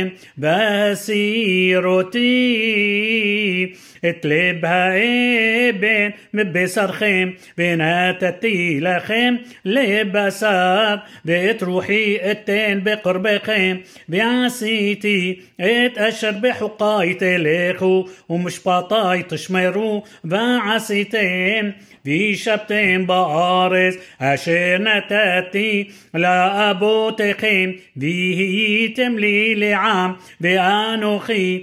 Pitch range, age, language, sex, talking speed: 185-215 Hz, 30-49, Hebrew, male, 55 wpm